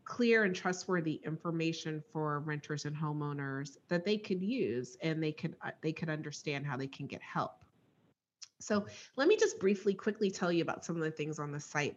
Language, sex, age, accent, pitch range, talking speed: English, female, 30-49, American, 155-200 Hz, 200 wpm